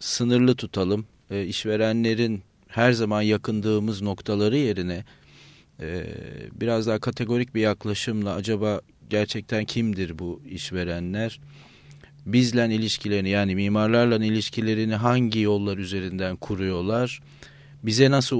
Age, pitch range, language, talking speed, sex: 40-59, 100-120 Hz, Turkish, 100 wpm, male